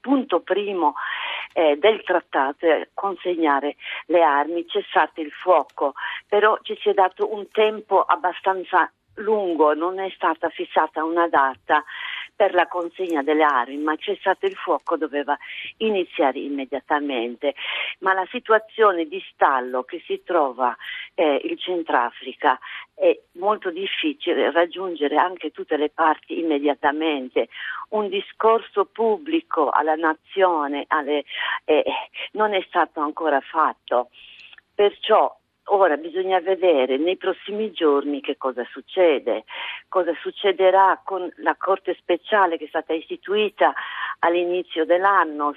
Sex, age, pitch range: female, 50-69, 160-210 Hz